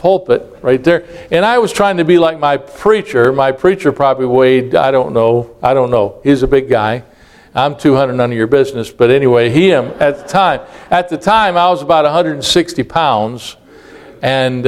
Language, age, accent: English, 50-69, American